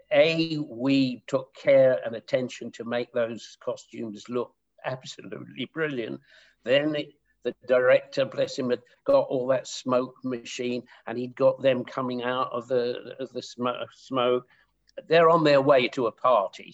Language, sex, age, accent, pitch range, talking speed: English, male, 50-69, British, 120-150 Hz, 160 wpm